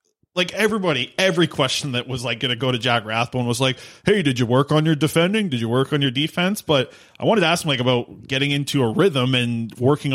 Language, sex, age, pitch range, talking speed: English, male, 20-39, 110-135 Hz, 250 wpm